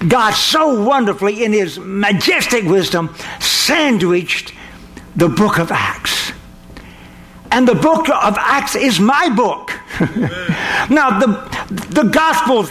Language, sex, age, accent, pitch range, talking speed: English, male, 60-79, American, 175-250 Hz, 115 wpm